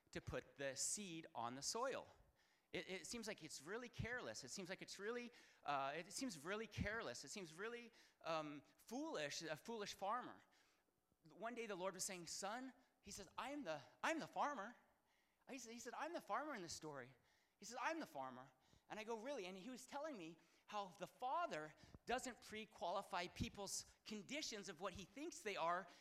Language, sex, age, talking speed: English, male, 30-49, 195 wpm